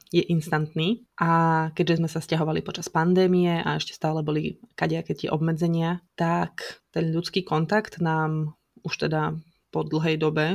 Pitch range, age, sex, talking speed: 155-180 Hz, 20-39, female, 150 wpm